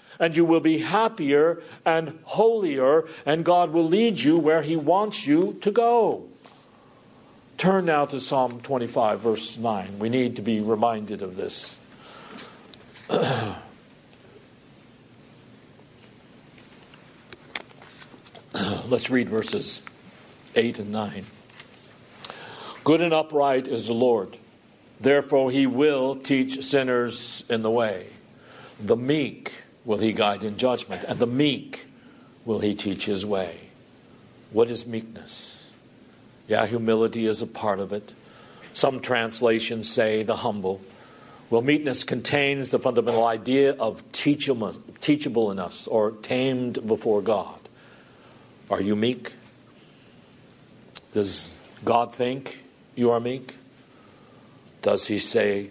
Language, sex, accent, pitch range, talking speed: English, male, American, 110-140 Hz, 115 wpm